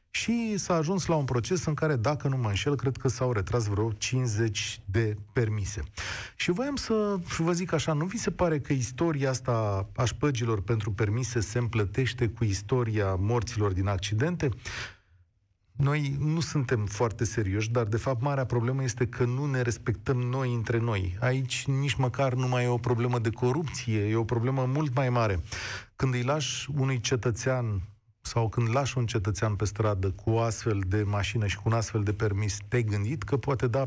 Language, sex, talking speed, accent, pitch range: Romanian, male, 185 wpm, native, 110-140 Hz